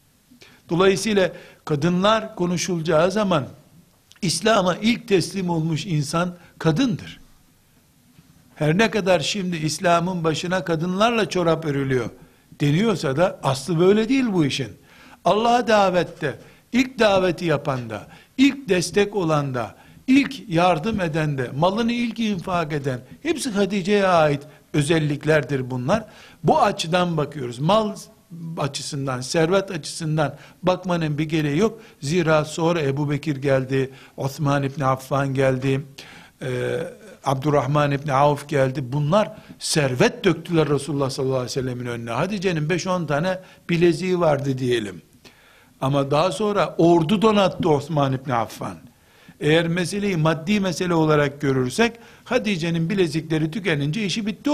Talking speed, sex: 120 wpm, male